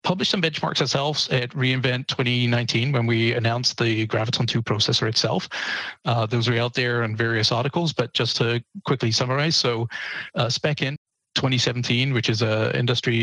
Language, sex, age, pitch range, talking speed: English, male, 30-49, 115-135 Hz, 165 wpm